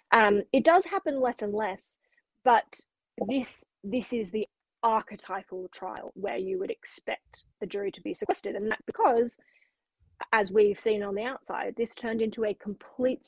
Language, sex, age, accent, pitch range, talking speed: English, female, 20-39, Australian, 195-255 Hz, 165 wpm